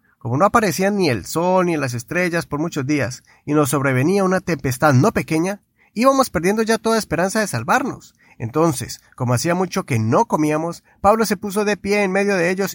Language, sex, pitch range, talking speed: Spanish, male, 145-205 Hz, 200 wpm